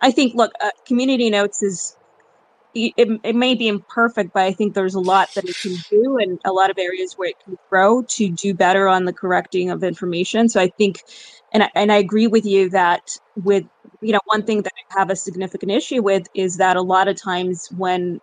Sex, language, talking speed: female, English, 225 wpm